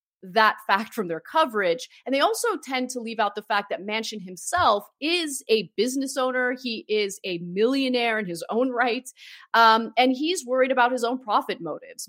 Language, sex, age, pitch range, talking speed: English, female, 30-49, 190-260 Hz, 190 wpm